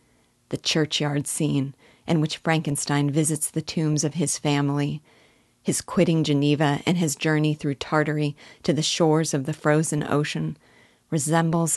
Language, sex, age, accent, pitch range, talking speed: English, female, 40-59, American, 140-160 Hz, 145 wpm